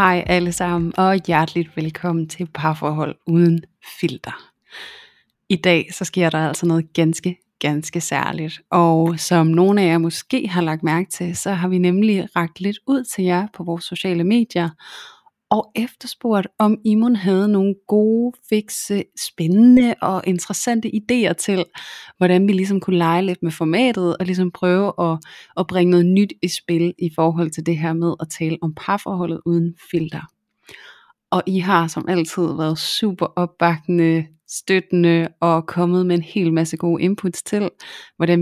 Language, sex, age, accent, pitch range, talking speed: Danish, female, 30-49, native, 165-190 Hz, 160 wpm